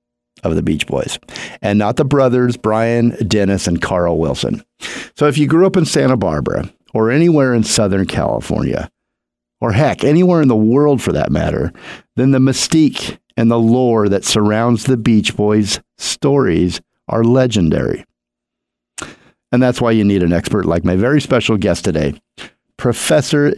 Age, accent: 50-69, American